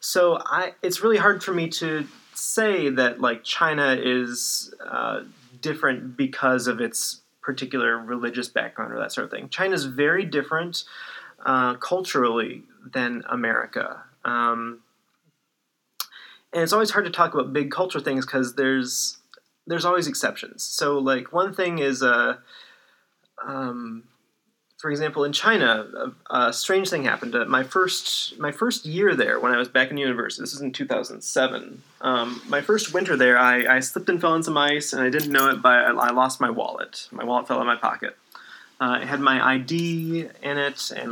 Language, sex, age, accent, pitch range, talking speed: English, male, 30-49, American, 125-165 Hz, 175 wpm